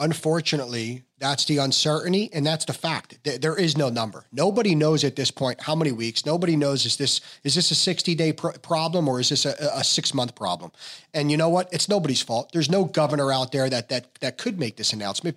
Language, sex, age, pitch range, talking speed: English, male, 30-49, 135-170 Hz, 225 wpm